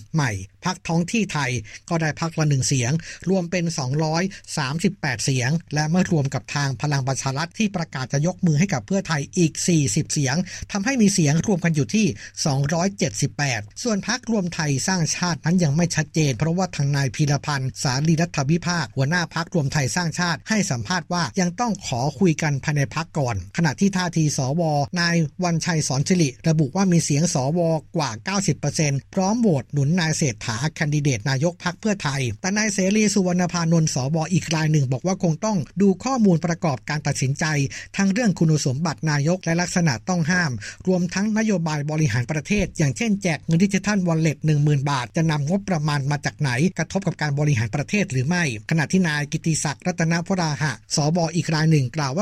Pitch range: 145-180 Hz